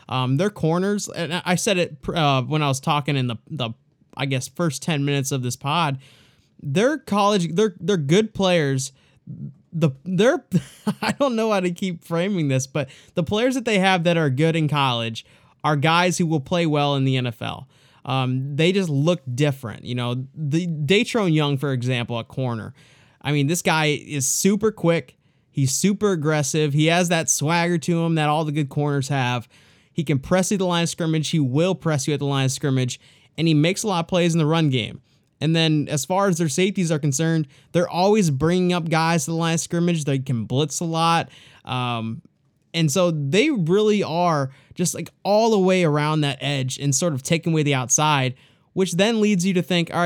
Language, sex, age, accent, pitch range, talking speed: English, male, 20-39, American, 135-175 Hz, 210 wpm